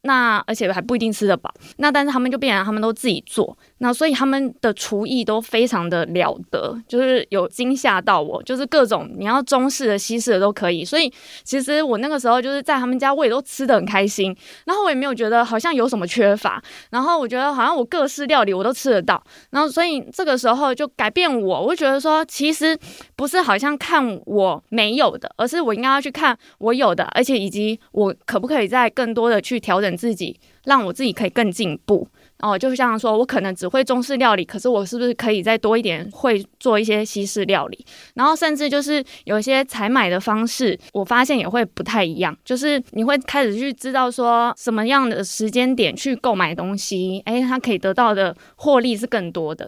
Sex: female